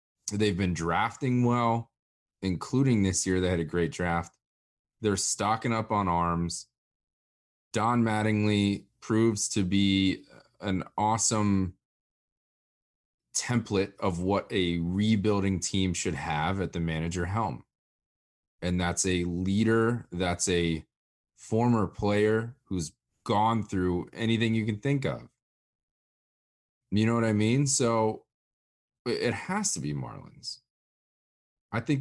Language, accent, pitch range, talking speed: English, American, 85-120 Hz, 120 wpm